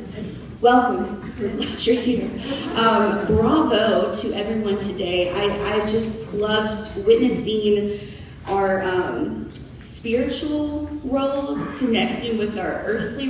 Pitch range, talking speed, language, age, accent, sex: 205-255 Hz, 105 wpm, English, 20-39, American, female